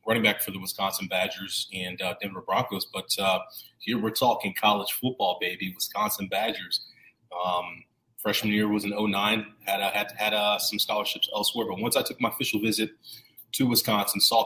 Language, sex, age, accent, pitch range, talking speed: English, male, 30-49, American, 95-105 Hz, 175 wpm